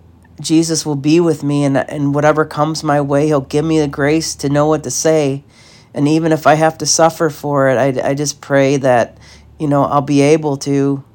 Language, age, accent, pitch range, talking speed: English, 40-59, American, 130-155 Hz, 220 wpm